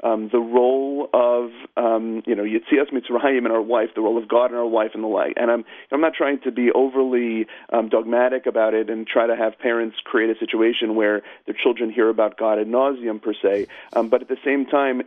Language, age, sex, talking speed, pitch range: English, 40-59, male, 240 wpm, 110-130 Hz